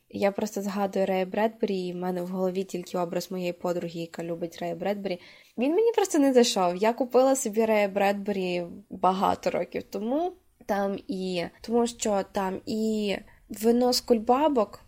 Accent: native